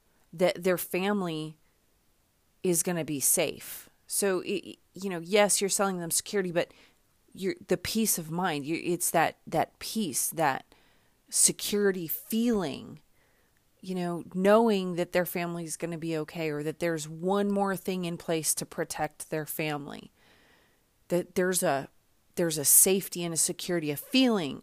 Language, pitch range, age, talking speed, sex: English, 165-195 Hz, 30-49, 155 wpm, female